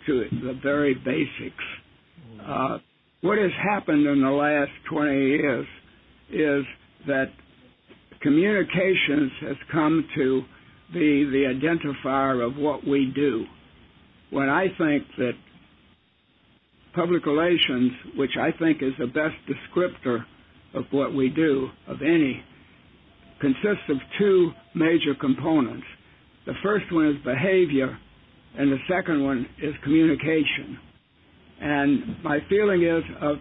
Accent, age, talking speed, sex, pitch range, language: American, 60-79, 120 wpm, male, 135-165 Hz, English